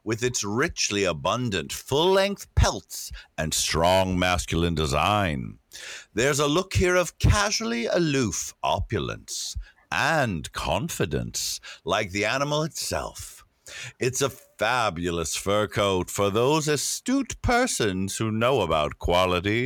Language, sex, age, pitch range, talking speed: English, male, 60-79, 95-140 Hz, 115 wpm